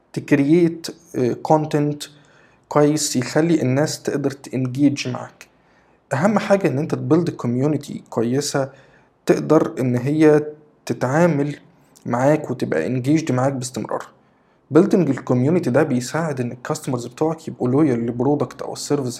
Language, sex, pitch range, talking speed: English, male, 125-155 Hz, 105 wpm